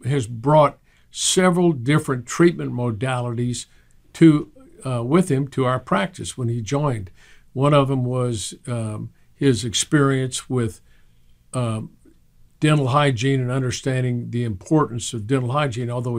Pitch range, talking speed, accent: 115-135 Hz, 130 wpm, American